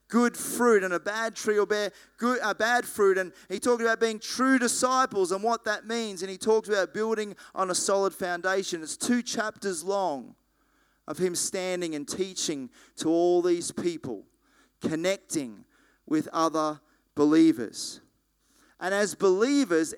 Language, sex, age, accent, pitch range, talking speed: English, male, 30-49, Australian, 160-225 Hz, 155 wpm